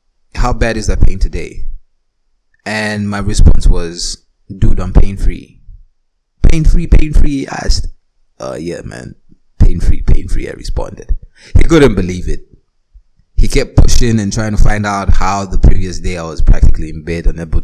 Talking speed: 155 wpm